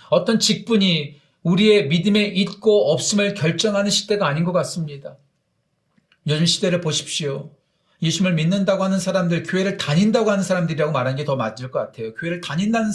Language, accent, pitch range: Korean, native, 135-200 Hz